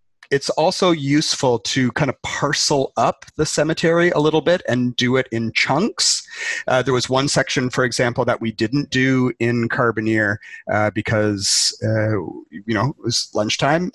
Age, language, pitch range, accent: 30-49, English, 110-140 Hz, American